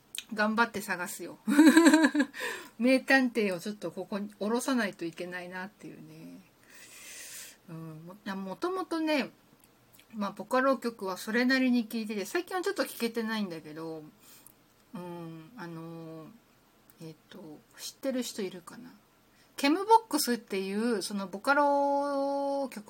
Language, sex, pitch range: Japanese, female, 180-265 Hz